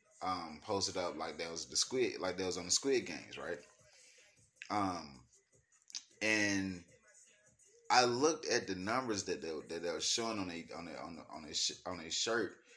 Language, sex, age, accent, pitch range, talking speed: English, male, 20-39, American, 90-110 Hz, 185 wpm